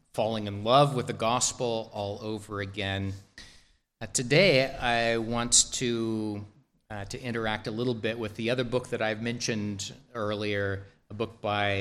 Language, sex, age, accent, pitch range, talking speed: English, male, 30-49, American, 100-120 Hz, 160 wpm